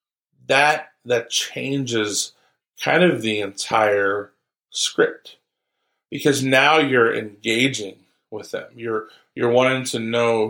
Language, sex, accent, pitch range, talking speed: English, male, American, 110-140 Hz, 110 wpm